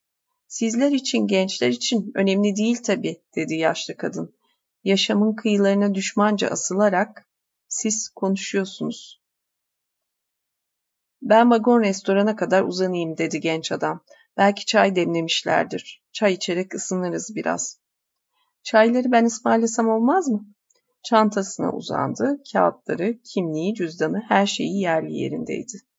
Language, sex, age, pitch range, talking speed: Turkish, female, 40-59, 190-235 Hz, 105 wpm